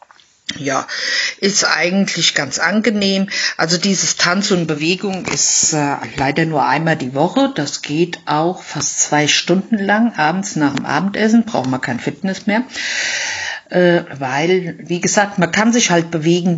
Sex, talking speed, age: female, 150 wpm, 50-69